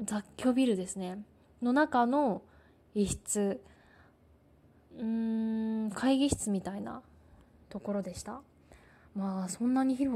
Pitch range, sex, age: 195-255 Hz, female, 20-39